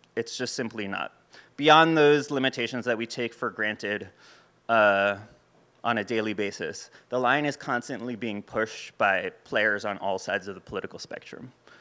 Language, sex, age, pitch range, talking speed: English, male, 20-39, 105-125 Hz, 165 wpm